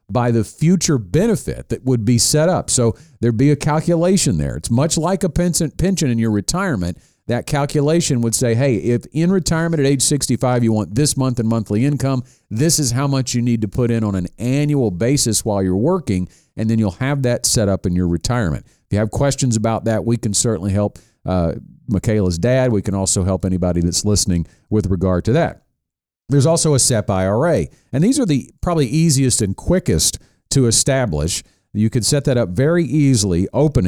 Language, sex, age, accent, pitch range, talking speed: English, male, 50-69, American, 105-145 Hz, 200 wpm